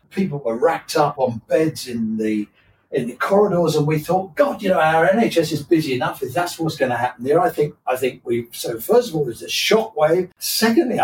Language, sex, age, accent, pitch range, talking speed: English, male, 50-69, British, 130-175 Hz, 230 wpm